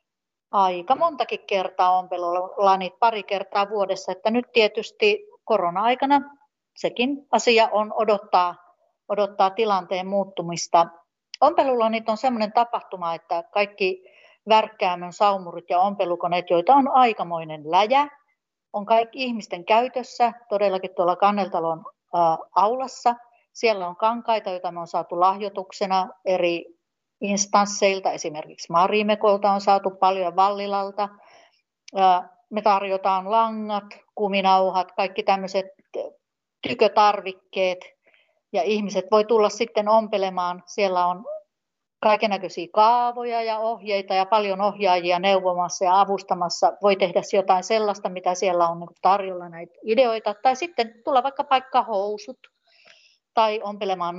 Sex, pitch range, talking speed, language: female, 185-225 Hz, 110 wpm, Finnish